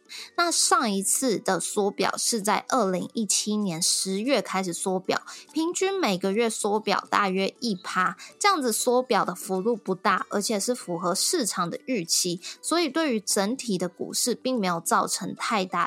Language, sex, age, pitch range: Chinese, female, 20-39, 190-255 Hz